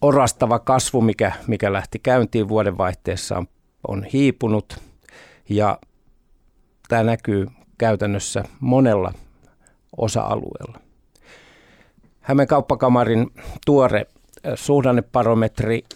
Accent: native